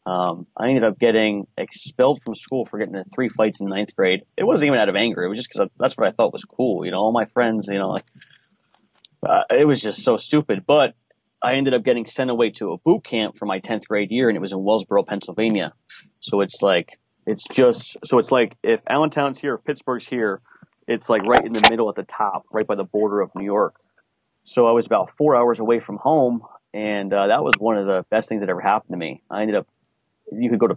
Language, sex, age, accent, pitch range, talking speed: English, male, 30-49, American, 105-125 Hz, 250 wpm